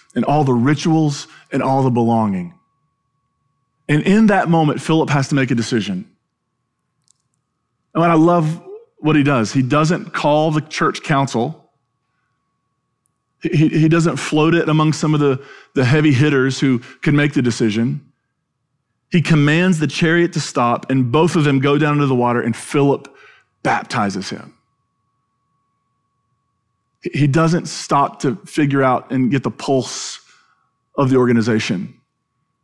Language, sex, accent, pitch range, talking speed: English, male, American, 125-155 Hz, 140 wpm